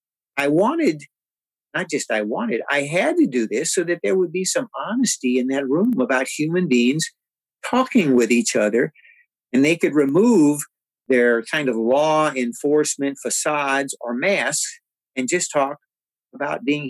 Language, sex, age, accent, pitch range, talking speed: English, male, 50-69, American, 125-155 Hz, 160 wpm